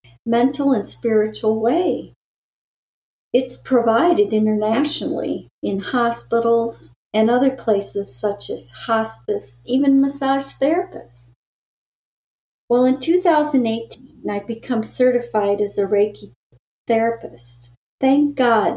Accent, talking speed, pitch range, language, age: American, 95 wpm, 205-260 Hz, English, 50-69